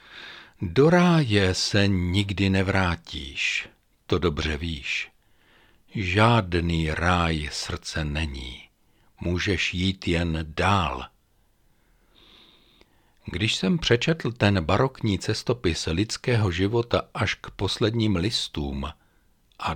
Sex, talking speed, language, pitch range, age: male, 90 wpm, Czech, 80-115 Hz, 60-79